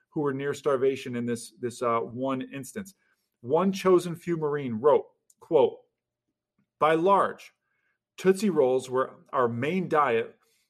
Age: 40-59